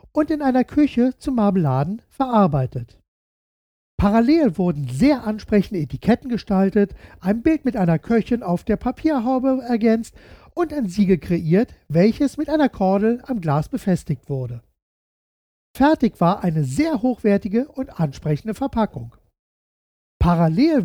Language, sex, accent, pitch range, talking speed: German, male, German, 160-250 Hz, 125 wpm